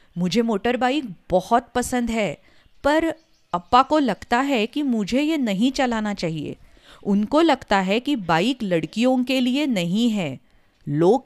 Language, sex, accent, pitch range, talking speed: English, female, Indian, 180-265 Hz, 150 wpm